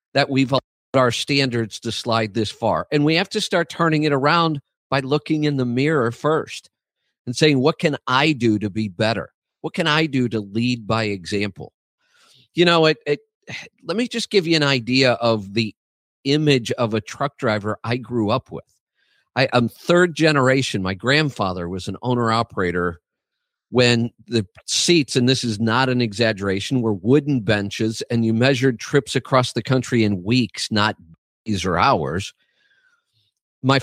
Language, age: English, 50-69